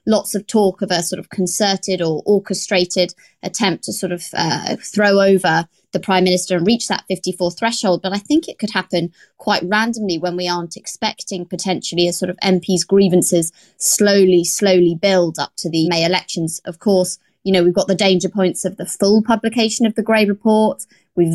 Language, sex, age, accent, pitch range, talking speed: English, female, 20-39, British, 175-205 Hz, 195 wpm